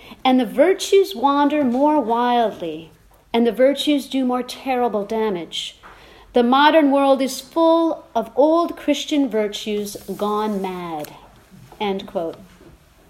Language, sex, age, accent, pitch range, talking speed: English, female, 50-69, American, 215-290 Hz, 115 wpm